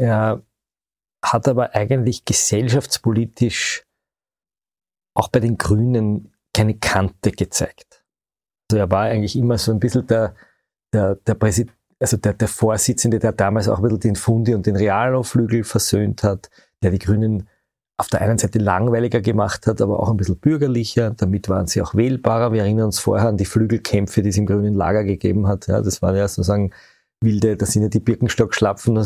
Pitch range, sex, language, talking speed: 105-120 Hz, male, German, 180 wpm